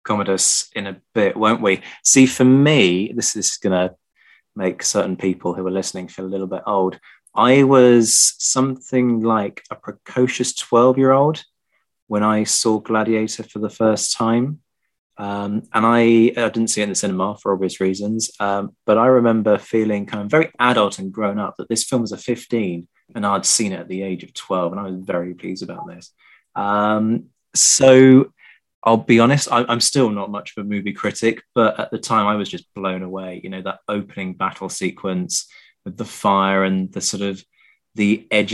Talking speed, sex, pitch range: 195 wpm, male, 95-120 Hz